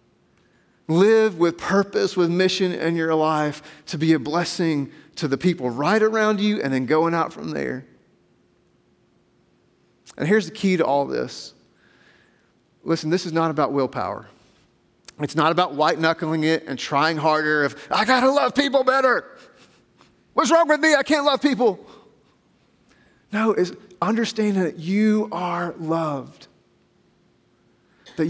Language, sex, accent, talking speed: English, male, American, 145 wpm